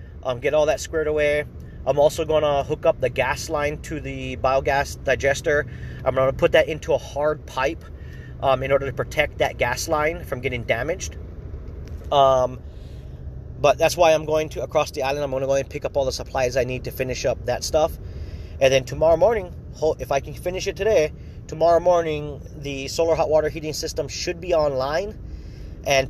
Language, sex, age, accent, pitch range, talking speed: English, male, 30-49, American, 125-150 Hz, 200 wpm